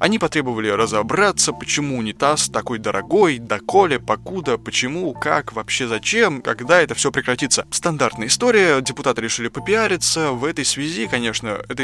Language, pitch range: Russian, 115-140 Hz